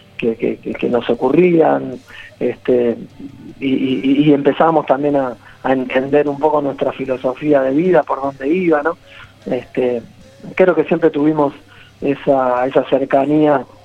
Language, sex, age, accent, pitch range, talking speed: Spanish, male, 40-59, Argentinian, 130-170 Hz, 140 wpm